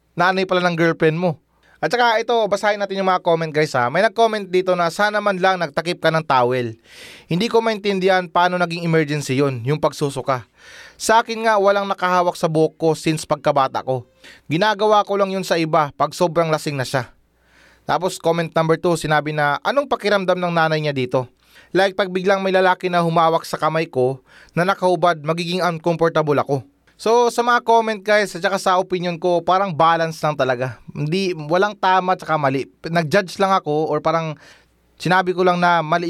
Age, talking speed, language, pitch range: 20-39, 185 wpm, Filipino, 155-185 Hz